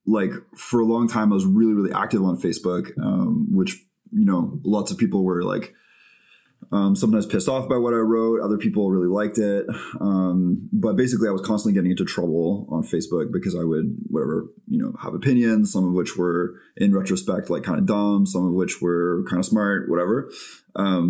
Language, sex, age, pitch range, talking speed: English, male, 20-39, 95-115 Hz, 205 wpm